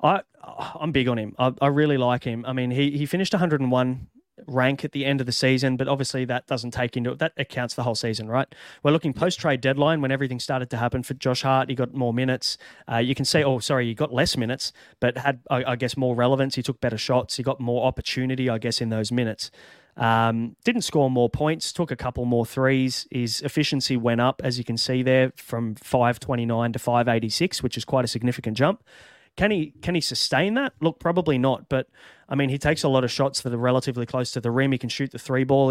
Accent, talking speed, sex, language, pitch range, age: Australian, 240 wpm, male, English, 125-140 Hz, 30-49